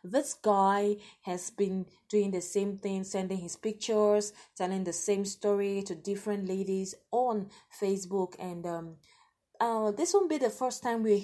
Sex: female